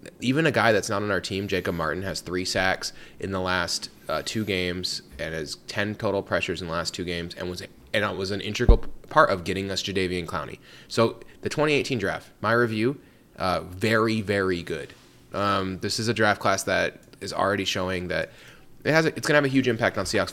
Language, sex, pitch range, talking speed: English, male, 90-105 Hz, 220 wpm